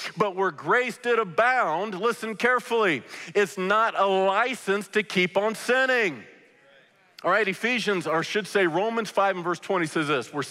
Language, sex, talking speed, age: English, male, 165 wpm, 50-69